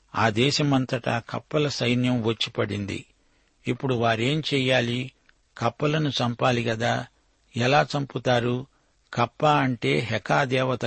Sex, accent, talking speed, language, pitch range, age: male, native, 90 wpm, Telugu, 115-135 Hz, 60-79